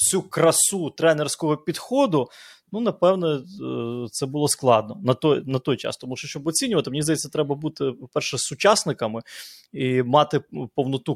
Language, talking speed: Ukrainian, 145 wpm